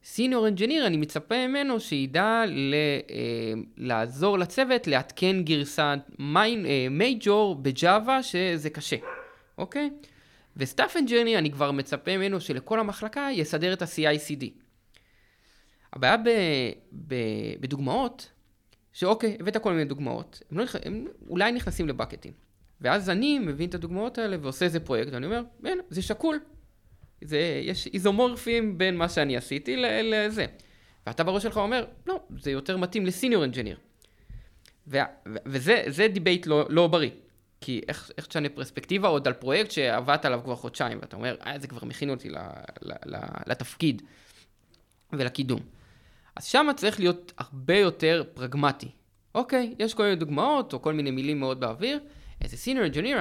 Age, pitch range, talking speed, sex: 20-39, 135-220 Hz, 145 wpm, male